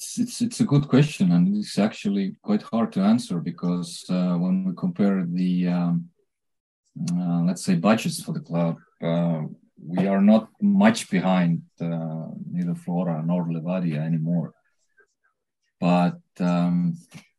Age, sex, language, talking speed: 20-39, male, English, 140 wpm